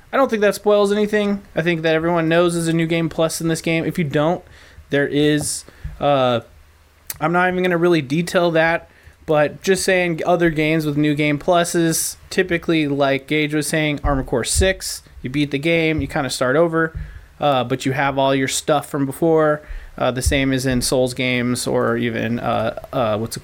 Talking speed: 205 wpm